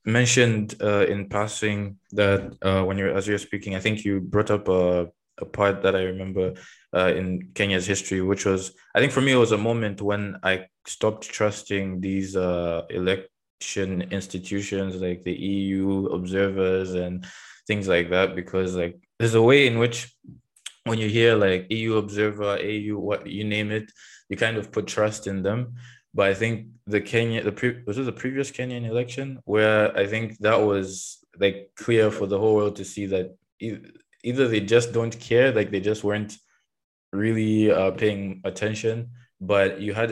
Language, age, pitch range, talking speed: English, 20-39, 95-110 Hz, 175 wpm